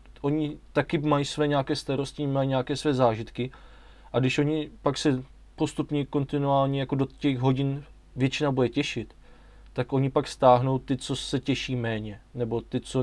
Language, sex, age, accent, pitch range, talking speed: Czech, male, 20-39, native, 125-150 Hz, 165 wpm